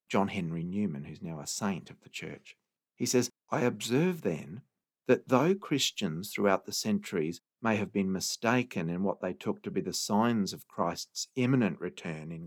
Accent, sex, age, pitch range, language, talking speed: Australian, male, 50-69, 105-145 Hz, English, 185 wpm